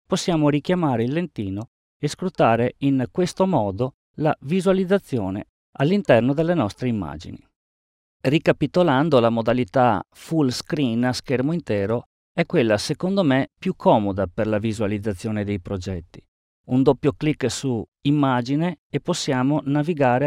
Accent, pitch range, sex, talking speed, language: native, 115-155 Hz, male, 125 wpm, Italian